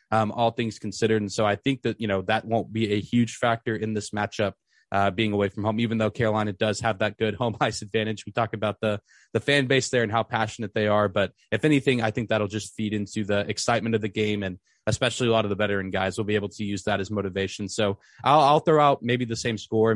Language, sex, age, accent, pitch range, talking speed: English, male, 20-39, American, 105-120 Hz, 260 wpm